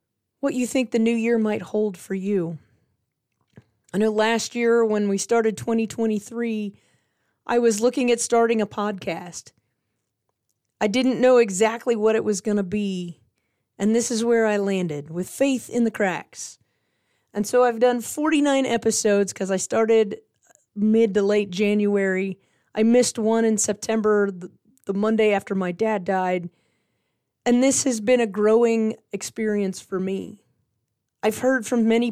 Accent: American